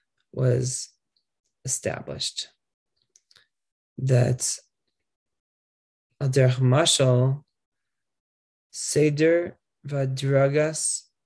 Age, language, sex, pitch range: 20-39, English, male, 125-145 Hz